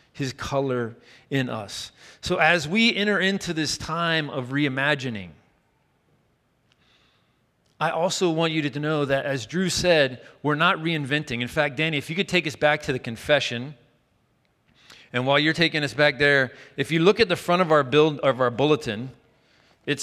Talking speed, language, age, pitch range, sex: 175 wpm, English, 40-59, 140-175 Hz, male